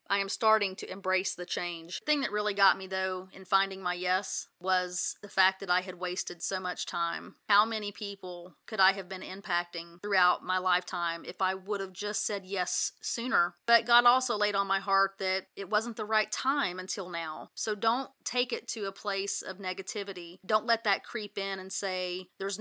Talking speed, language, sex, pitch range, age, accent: 210 wpm, English, female, 185-215 Hz, 30-49, American